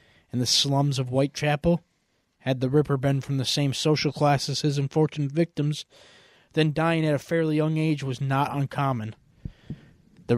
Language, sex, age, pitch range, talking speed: English, male, 20-39, 115-140 Hz, 170 wpm